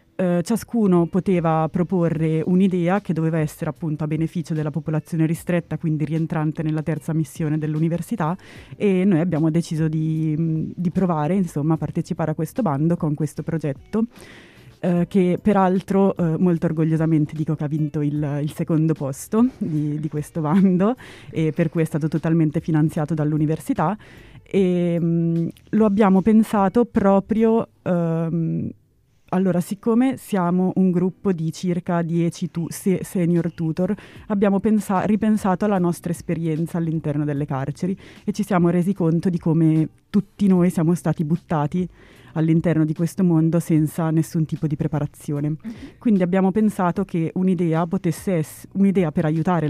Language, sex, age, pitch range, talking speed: Italian, female, 30-49, 160-185 Hz, 145 wpm